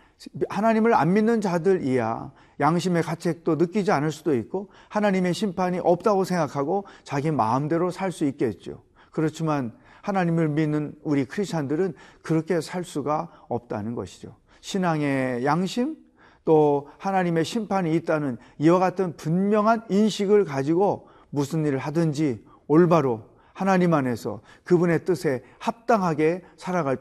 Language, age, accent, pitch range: Korean, 40-59, native, 130-180 Hz